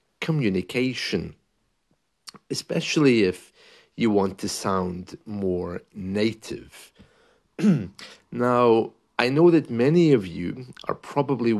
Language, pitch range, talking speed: English, 95-140 Hz, 95 wpm